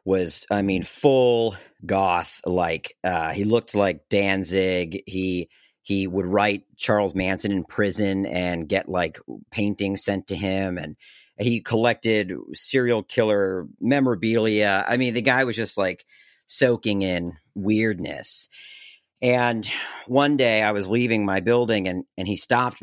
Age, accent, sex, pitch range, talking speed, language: 40-59, American, male, 95-125 Hz, 140 wpm, English